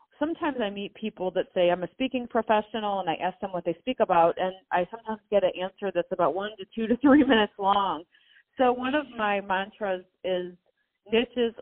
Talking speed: 205 wpm